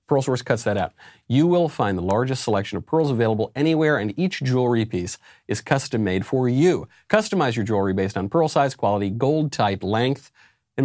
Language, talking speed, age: English, 200 wpm, 40-59